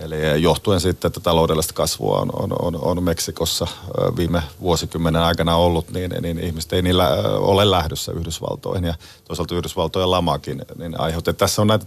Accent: native